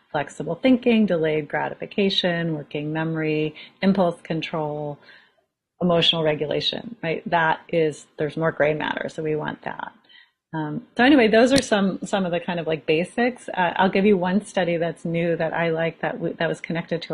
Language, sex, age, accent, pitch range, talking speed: English, female, 30-49, American, 160-185 Hz, 180 wpm